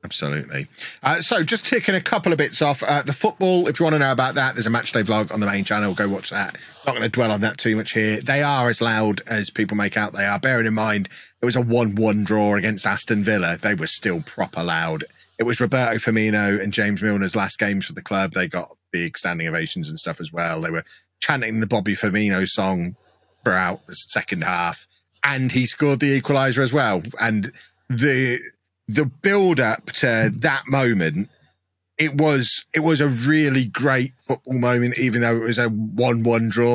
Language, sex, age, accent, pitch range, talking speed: English, male, 30-49, British, 110-140 Hz, 210 wpm